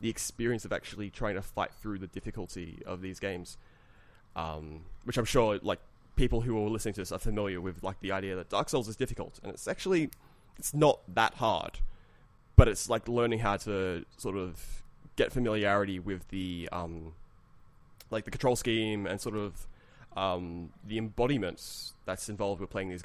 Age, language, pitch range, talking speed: 20-39, English, 95-115 Hz, 180 wpm